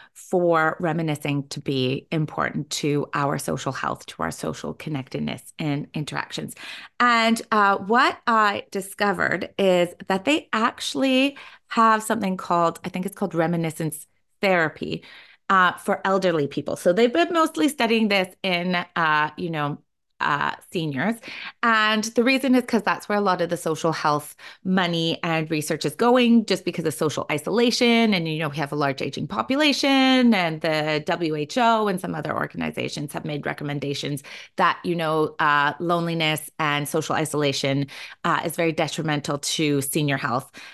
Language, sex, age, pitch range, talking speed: English, female, 30-49, 150-220 Hz, 155 wpm